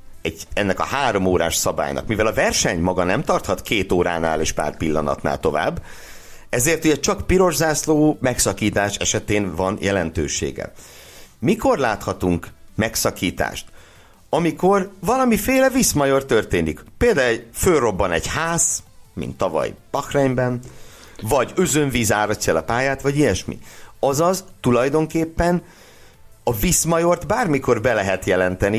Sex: male